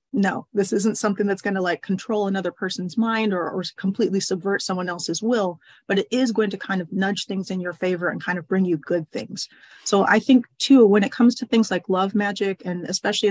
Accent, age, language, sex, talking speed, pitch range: American, 30-49, English, female, 235 wpm, 175-210 Hz